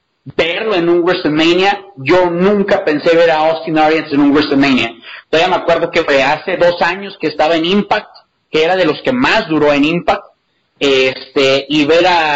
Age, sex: 30-49, male